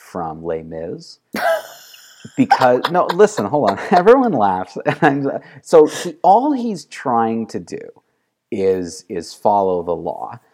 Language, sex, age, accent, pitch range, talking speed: English, male, 30-49, American, 90-130 Hz, 120 wpm